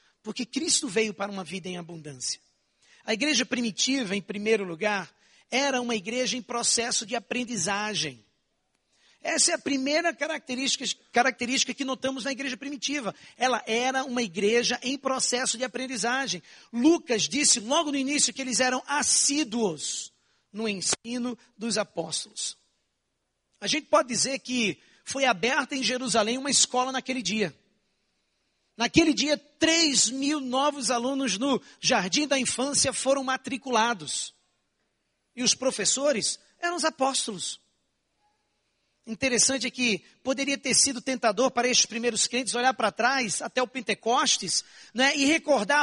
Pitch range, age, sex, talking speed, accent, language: 230-275 Hz, 50-69, male, 135 wpm, Brazilian, Portuguese